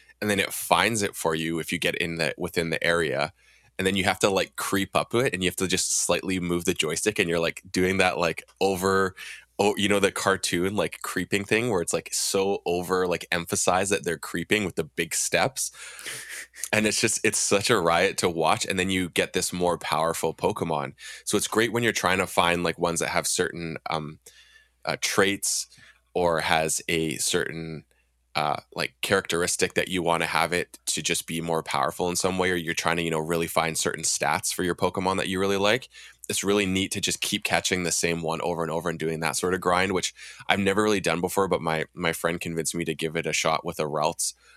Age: 20-39